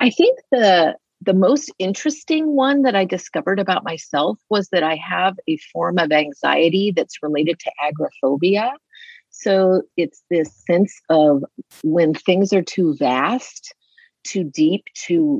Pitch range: 150-195 Hz